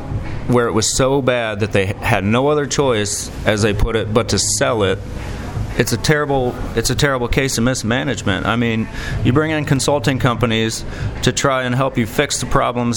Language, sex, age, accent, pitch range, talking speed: English, male, 30-49, American, 105-125 Hz, 205 wpm